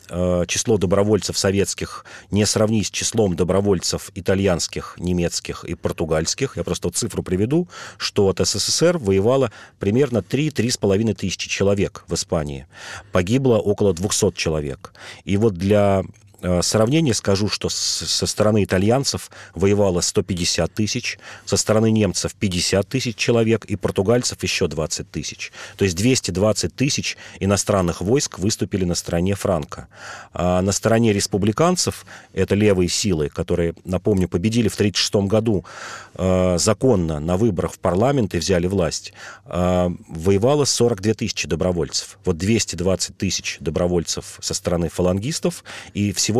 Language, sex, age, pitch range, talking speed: Russian, male, 40-59, 90-110 Hz, 125 wpm